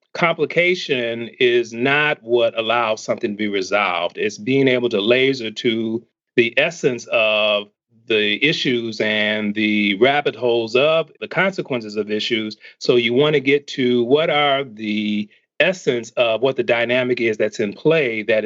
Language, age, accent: English, 40-59, American